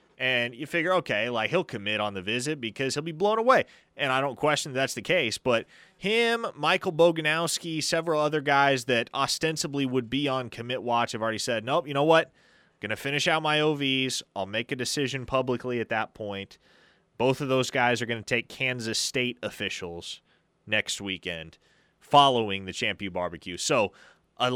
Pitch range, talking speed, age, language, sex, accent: 115-150 Hz, 185 wpm, 30-49, English, male, American